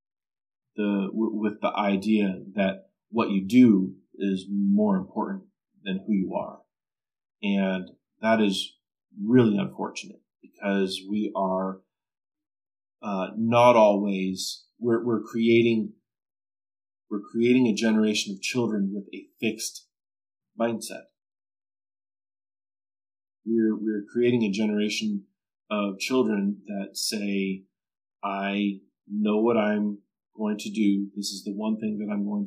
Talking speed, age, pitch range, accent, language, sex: 115 wpm, 30-49, 100-110 Hz, American, English, male